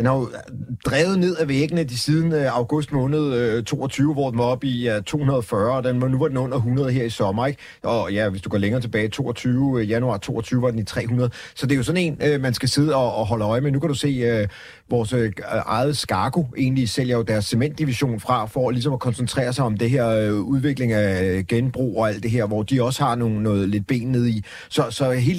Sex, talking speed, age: male, 245 wpm, 30-49